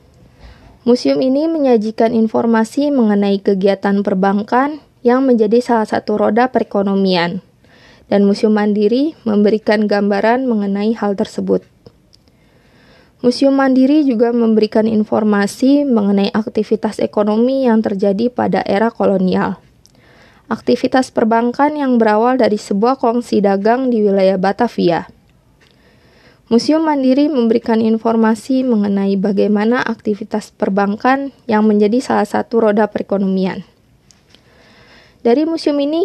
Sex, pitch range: female, 210-250 Hz